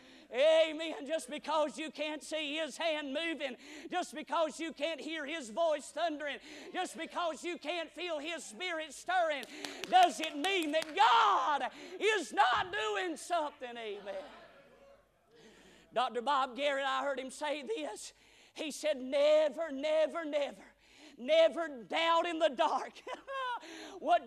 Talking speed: 135 wpm